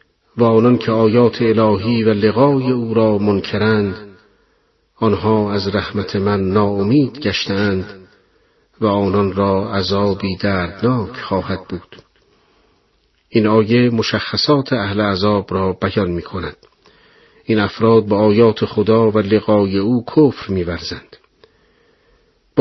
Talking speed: 115 wpm